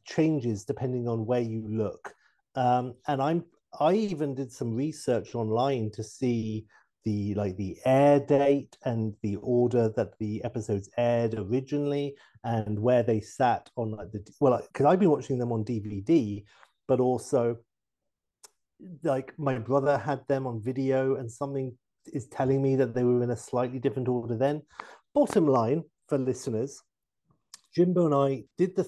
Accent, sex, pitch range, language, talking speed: British, male, 115-145 Hz, English, 160 wpm